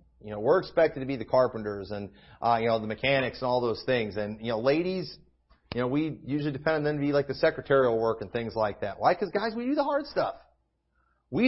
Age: 40-59